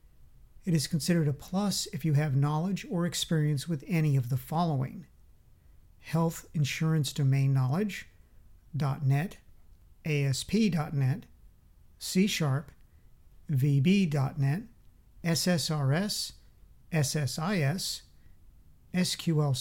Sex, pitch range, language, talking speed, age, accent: male, 135-170 Hz, English, 85 wpm, 50-69, American